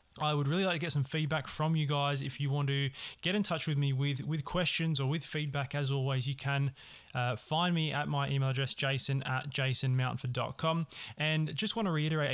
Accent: Australian